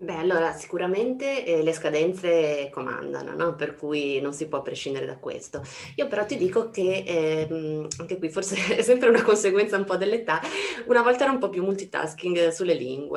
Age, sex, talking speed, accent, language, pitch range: 20-39, female, 185 wpm, native, Italian, 150-185 Hz